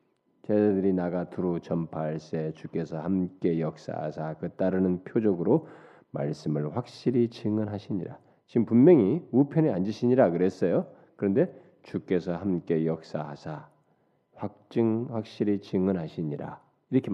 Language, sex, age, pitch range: Korean, male, 40-59, 90-155 Hz